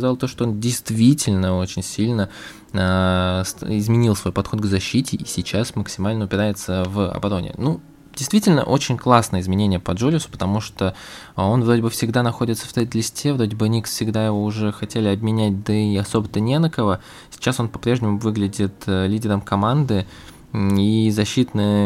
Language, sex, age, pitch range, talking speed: Russian, male, 20-39, 100-120 Hz, 155 wpm